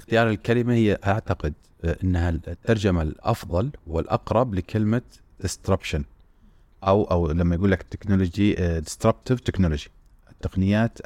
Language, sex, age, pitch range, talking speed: Arabic, male, 30-49, 85-105 Hz, 100 wpm